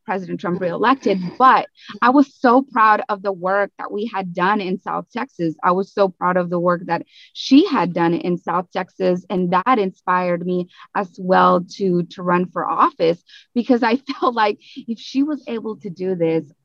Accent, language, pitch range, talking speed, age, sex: American, English, 175-225 Hz, 195 wpm, 20-39, female